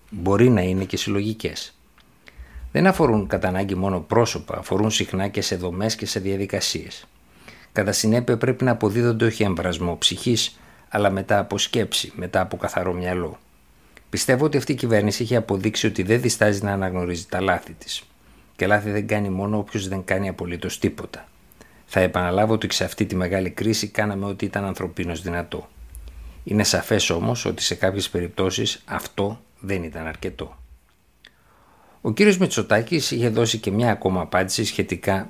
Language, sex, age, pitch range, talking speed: Greek, male, 60-79, 90-110 Hz, 160 wpm